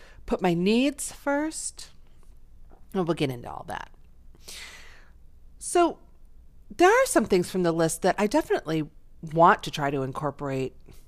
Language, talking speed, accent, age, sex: English, 140 wpm, American, 40-59, female